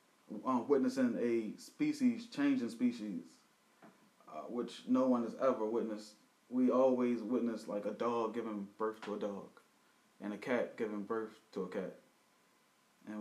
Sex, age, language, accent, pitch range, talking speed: male, 20-39, English, American, 105-135 Hz, 155 wpm